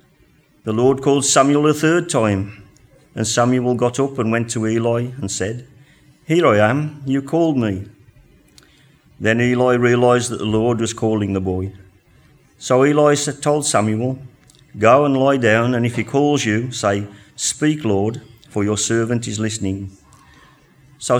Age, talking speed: 50-69, 155 wpm